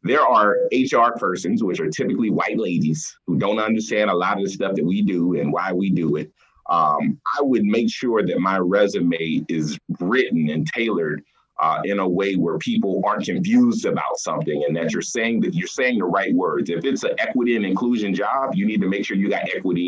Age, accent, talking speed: 30-49, American, 215 wpm